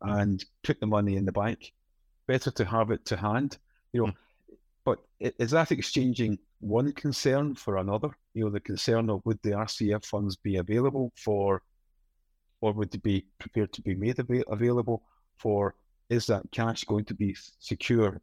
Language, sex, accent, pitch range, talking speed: English, male, British, 105-125 Hz, 170 wpm